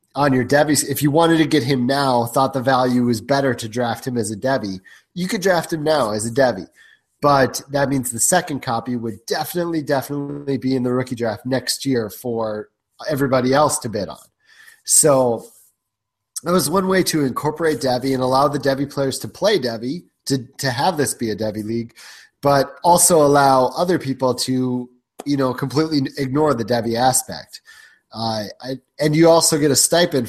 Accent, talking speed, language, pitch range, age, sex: American, 190 wpm, English, 125-155 Hz, 30-49, male